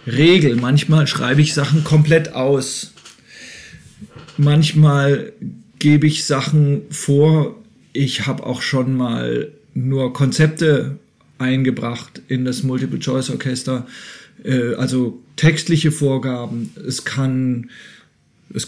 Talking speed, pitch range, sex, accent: 100 wpm, 135-160 Hz, male, German